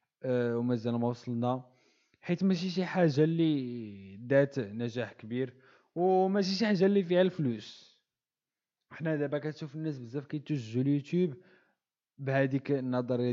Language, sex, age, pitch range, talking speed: Arabic, male, 20-39, 105-145 Hz, 115 wpm